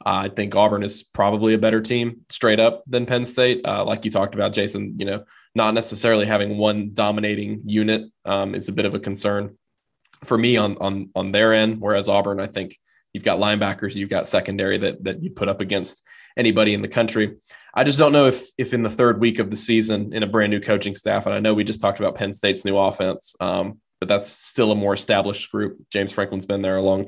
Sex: male